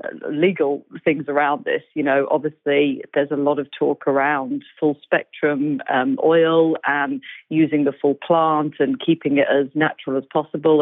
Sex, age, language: female, 40-59, English